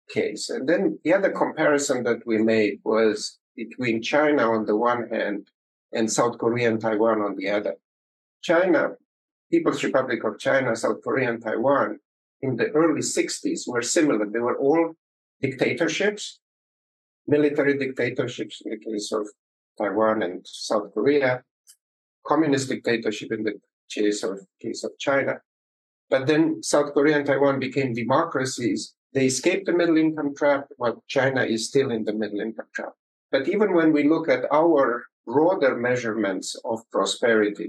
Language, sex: English, male